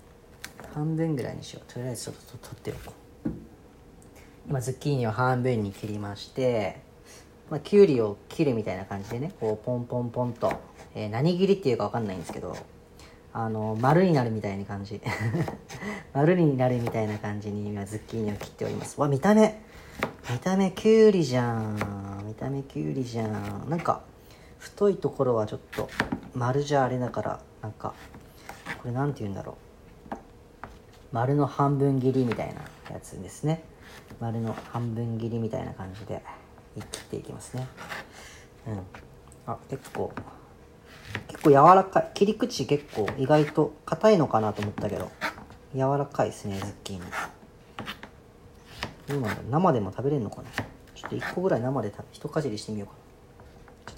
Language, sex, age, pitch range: Japanese, female, 40-59, 105-145 Hz